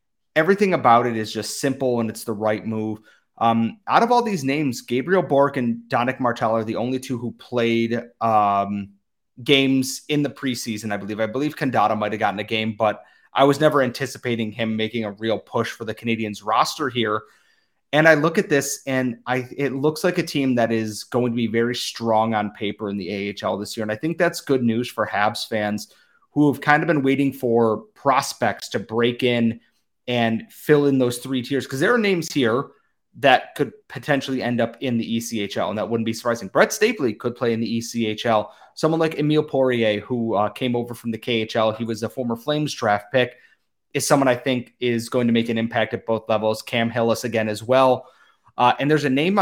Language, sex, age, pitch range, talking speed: English, male, 30-49, 110-135 Hz, 215 wpm